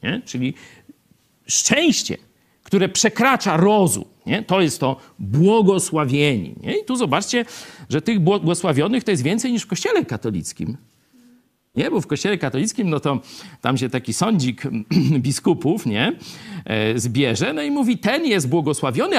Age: 50-69